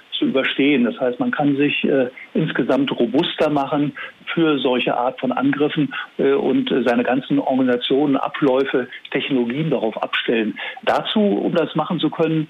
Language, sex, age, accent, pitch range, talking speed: German, male, 50-69, German, 125-175 Hz, 150 wpm